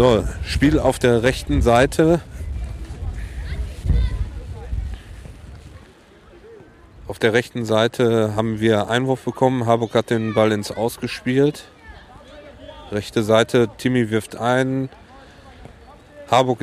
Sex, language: male, German